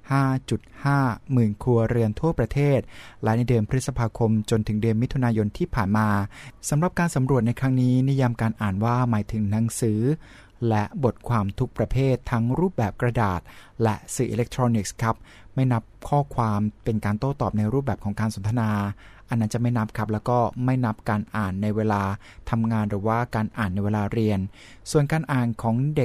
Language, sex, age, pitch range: Thai, male, 20-39, 110-130 Hz